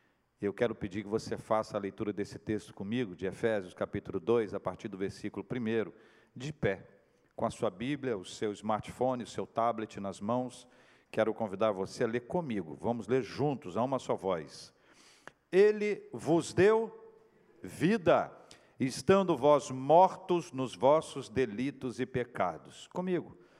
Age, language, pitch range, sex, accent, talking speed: 50-69, Portuguese, 125-180 Hz, male, Brazilian, 155 wpm